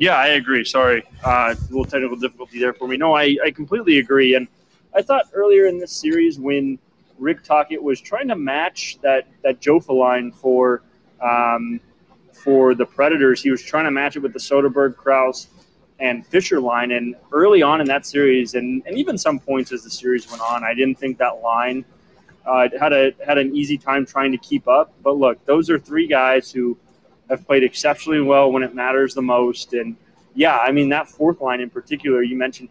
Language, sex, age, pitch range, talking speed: English, male, 20-39, 125-160 Hz, 205 wpm